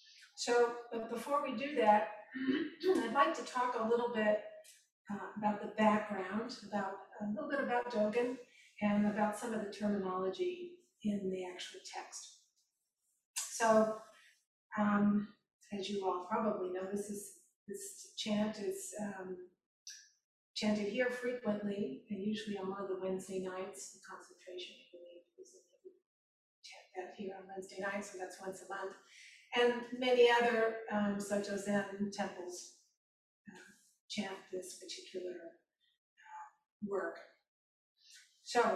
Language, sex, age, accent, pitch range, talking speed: English, female, 40-59, American, 195-240 Hz, 135 wpm